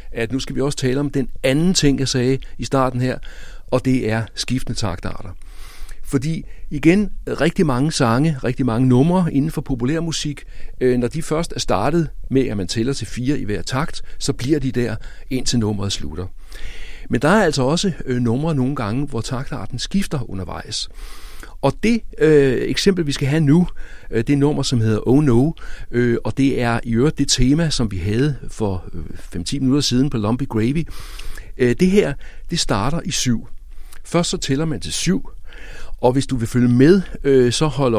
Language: Danish